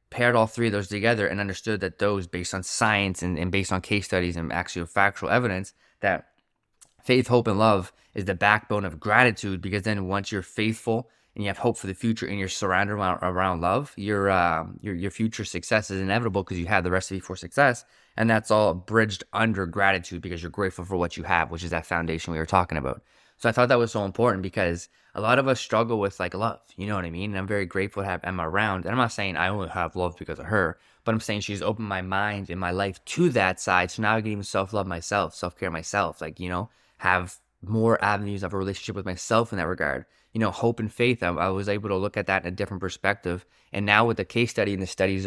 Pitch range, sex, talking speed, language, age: 90-110 Hz, male, 250 wpm, English, 20-39